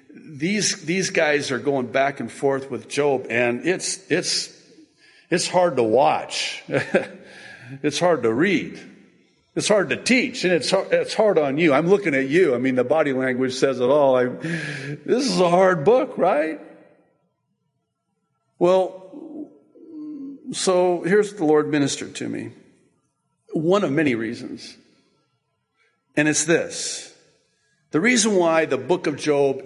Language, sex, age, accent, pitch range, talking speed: English, male, 50-69, American, 140-200 Hz, 150 wpm